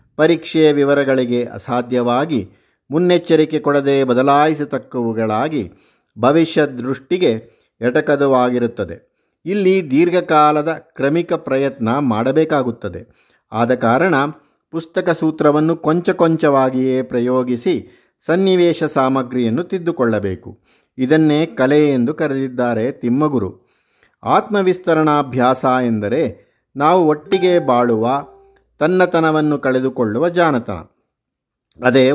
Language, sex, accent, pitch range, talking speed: Kannada, male, native, 130-155 Hz, 70 wpm